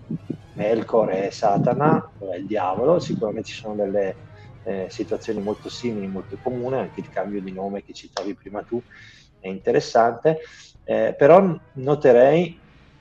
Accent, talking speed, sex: native, 145 wpm, male